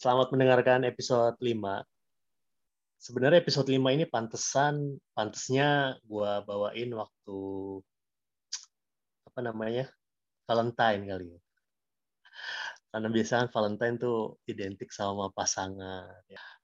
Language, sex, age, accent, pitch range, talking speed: Indonesian, male, 20-39, native, 100-125 Hz, 90 wpm